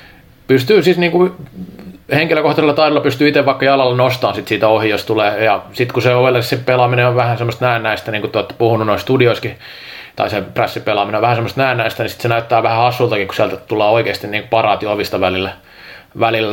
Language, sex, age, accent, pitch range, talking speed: Finnish, male, 30-49, native, 115-140 Hz, 190 wpm